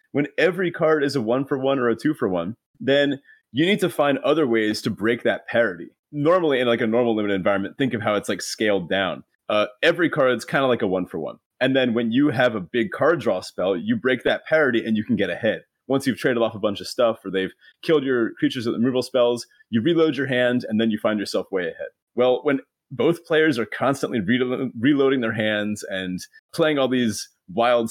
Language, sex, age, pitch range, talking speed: English, male, 30-49, 105-145 Hz, 225 wpm